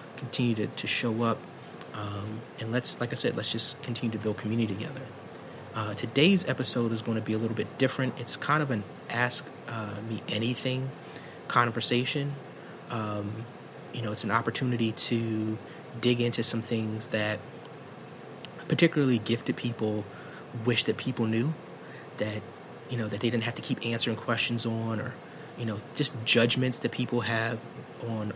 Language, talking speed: English, 165 wpm